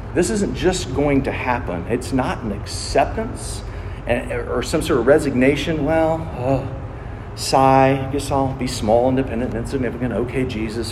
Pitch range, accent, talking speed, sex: 100-130 Hz, American, 145 wpm, male